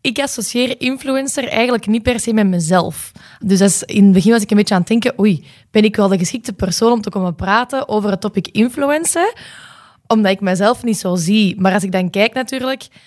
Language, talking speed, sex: Dutch, 220 wpm, female